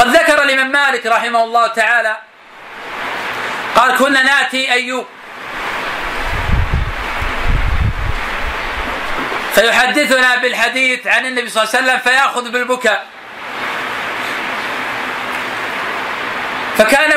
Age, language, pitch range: 40-59, Arabic, 235-260 Hz